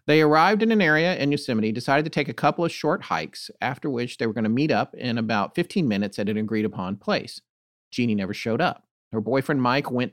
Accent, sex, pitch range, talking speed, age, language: American, male, 115-165 Hz, 230 wpm, 40-59, English